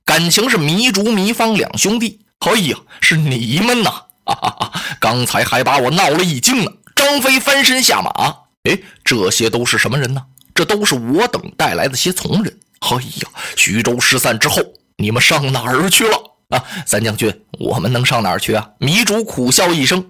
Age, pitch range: 20-39, 120-190 Hz